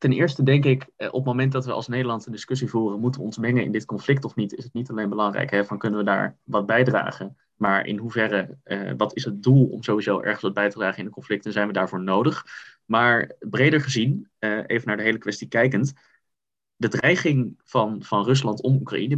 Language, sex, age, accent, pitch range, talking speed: Dutch, male, 20-39, Dutch, 110-135 Hz, 230 wpm